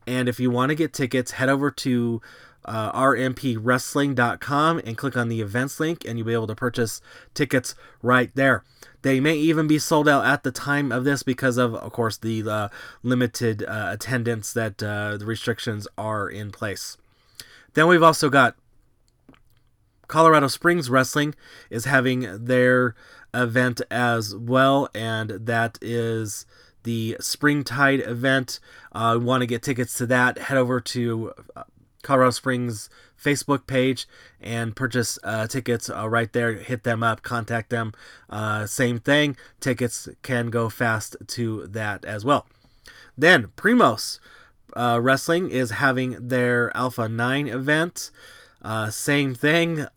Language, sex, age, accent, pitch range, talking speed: English, male, 30-49, American, 115-135 Hz, 150 wpm